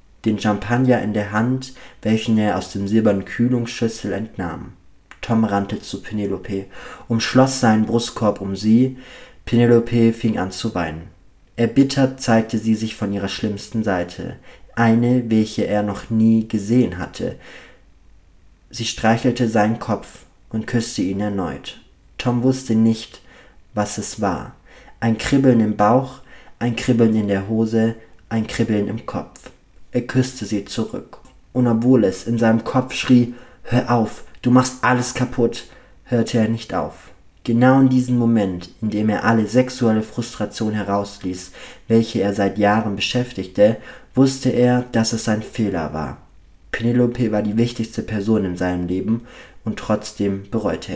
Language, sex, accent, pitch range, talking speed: German, male, German, 100-120 Hz, 145 wpm